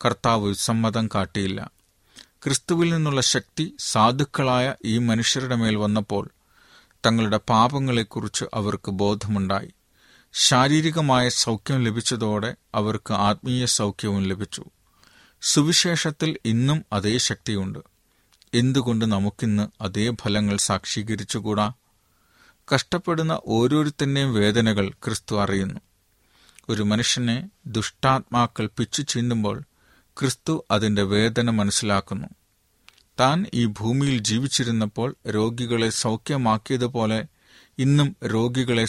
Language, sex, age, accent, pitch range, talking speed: Malayalam, male, 40-59, native, 105-130 Hz, 80 wpm